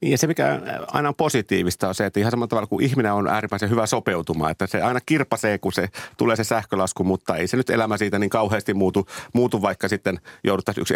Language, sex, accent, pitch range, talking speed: Finnish, male, native, 95-130 Hz, 225 wpm